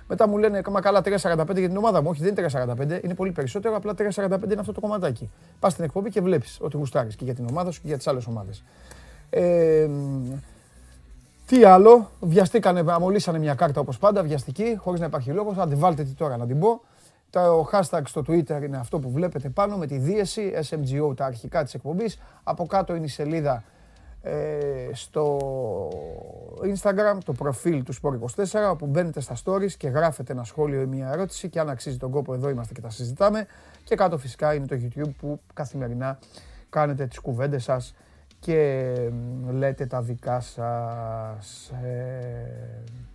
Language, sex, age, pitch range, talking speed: Greek, male, 30-49, 130-185 Hz, 180 wpm